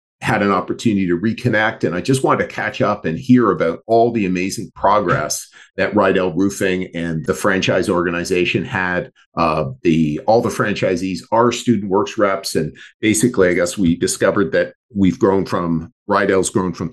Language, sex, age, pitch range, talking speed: English, male, 50-69, 95-125 Hz, 175 wpm